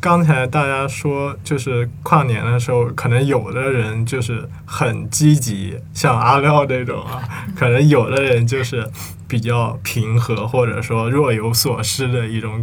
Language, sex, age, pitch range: Chinese, male, 20-39, 115-140 Hz